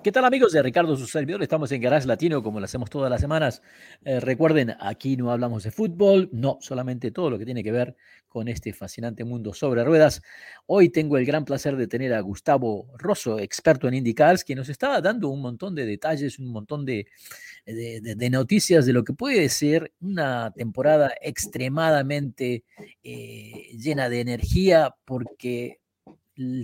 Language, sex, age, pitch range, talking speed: Spanish, male, 40-59, 120-165 Hz, 180 wpm